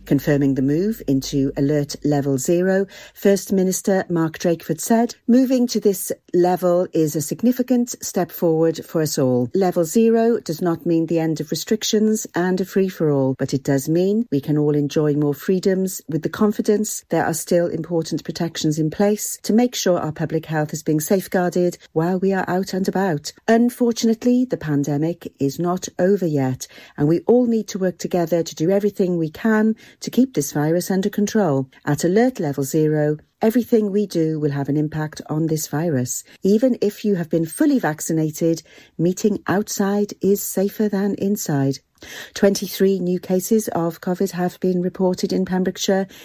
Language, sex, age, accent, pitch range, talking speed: English, female, 40-59, British, 155-200 Hz, 175 wpm